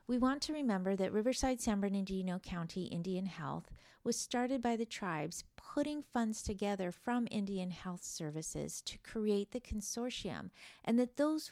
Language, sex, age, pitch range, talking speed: English, female, 50-69, 175-230 Hz, 155 wpm